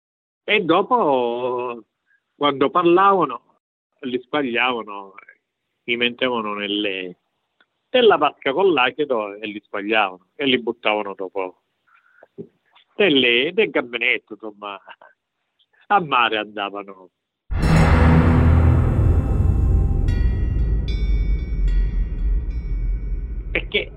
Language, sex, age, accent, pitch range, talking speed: Italian, male, 50-69, native, 95-145 Hz, 70 wpm